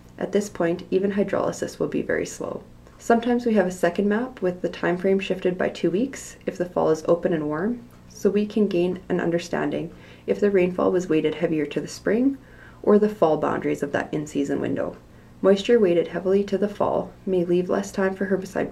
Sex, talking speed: female, 210 wpm